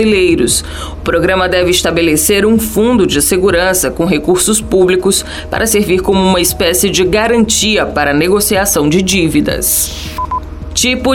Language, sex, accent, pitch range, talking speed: Portuguese, female, Brazilian, 180-225 Hz, 125 wpm